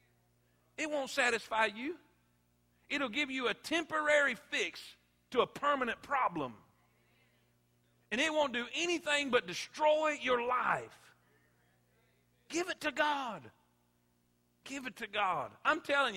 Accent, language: American, English